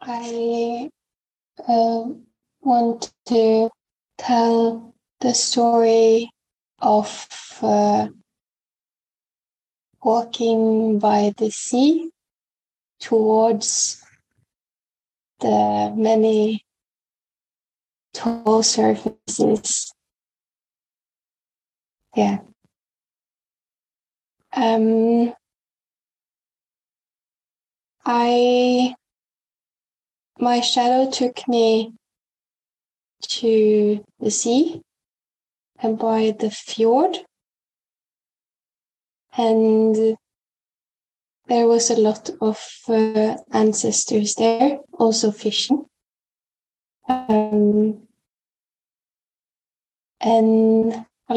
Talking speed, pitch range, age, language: 55 wpm, 220-240 Hz, 20-39, Finnish